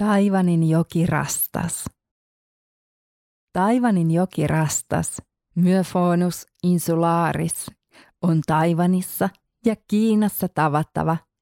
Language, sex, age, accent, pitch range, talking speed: Finnish, female, 30-49, native, 155-185 Hz, 70 wpm